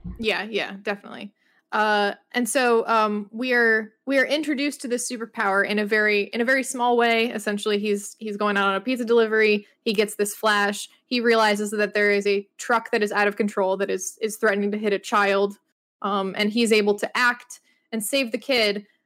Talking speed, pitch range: 210 wpm, 205-250 Hz